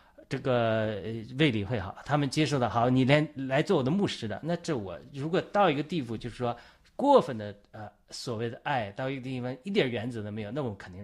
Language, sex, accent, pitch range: Chinese, male, native, 110-150 Hz